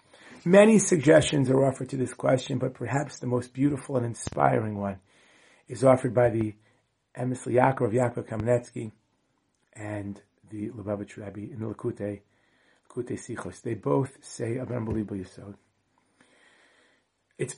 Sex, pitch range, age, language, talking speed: male, 120-155 Hz, 30-49, English, 130 wpm